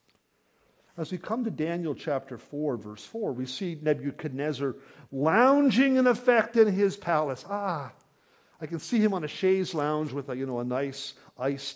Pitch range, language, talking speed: 150-225 Hz, English, 165 wpm